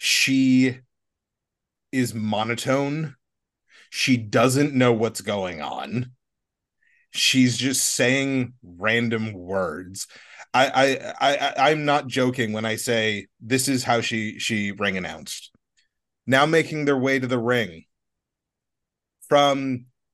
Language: English